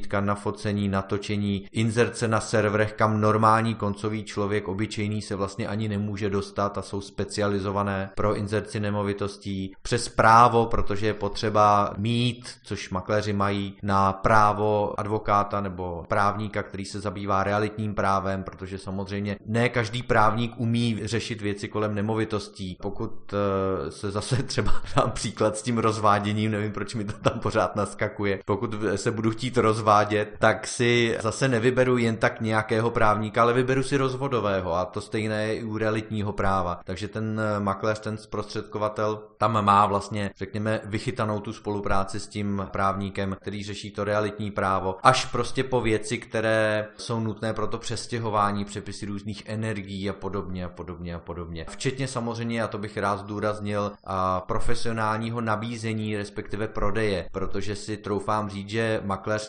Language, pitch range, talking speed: Czech, 100-110 Hz, 150 wpm